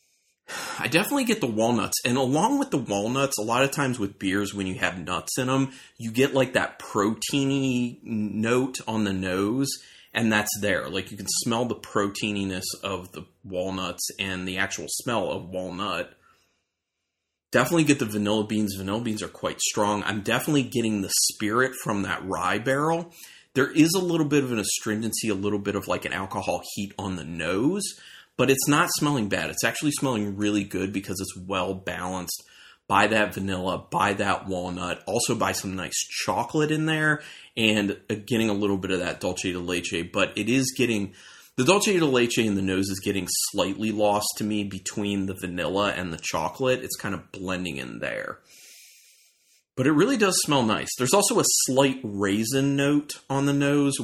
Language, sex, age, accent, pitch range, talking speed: English, male, 30-49, American, 95-130 Hz, 190 wpm